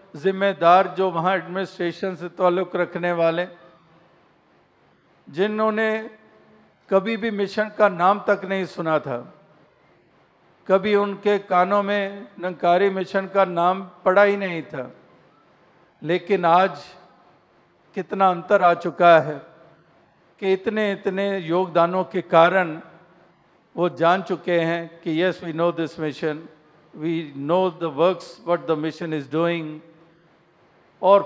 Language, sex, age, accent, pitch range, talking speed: Hindi, male, 50-69, native, 165-190 Hz, 120 wpm